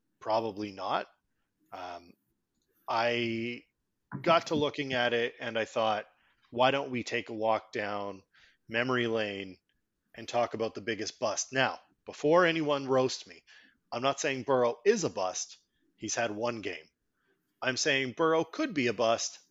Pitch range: 100-130 Hz